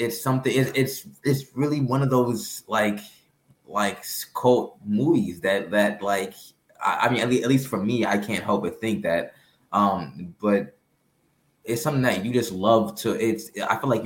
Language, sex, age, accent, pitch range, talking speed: English, male, 20-39, American, 100-115 Hz, 180 wpm